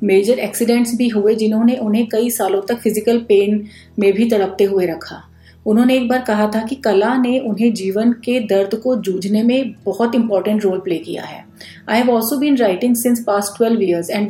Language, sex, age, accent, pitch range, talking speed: Hindi, female, 30-49, native, 200-240 Hz, 195 wpm